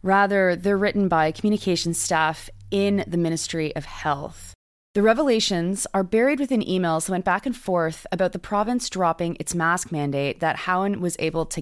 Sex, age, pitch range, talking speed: female, 20-39, 155-190 Hz, 175 wpm